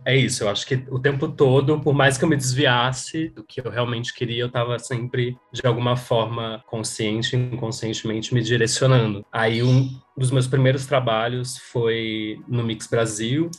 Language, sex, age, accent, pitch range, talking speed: Portuguese, male, 20-39, Brazilian, 115-130 Hz, 170 wpm